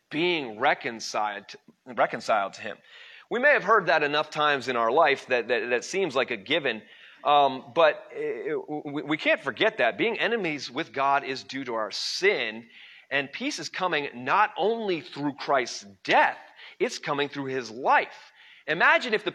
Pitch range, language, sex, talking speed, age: 135-200 Hz, English, male, 170 wpm, 30-49